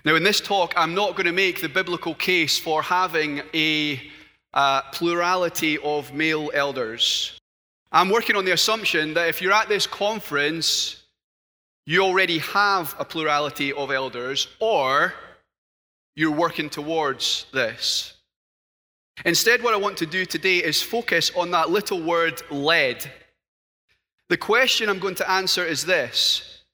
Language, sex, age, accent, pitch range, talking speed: English, male, 20-39, British, 135-175 Hz, 145 wpm